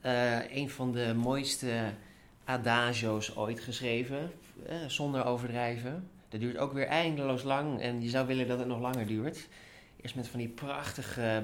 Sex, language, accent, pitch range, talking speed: male, English, Dutch, 115-140 Hz, 165 wpm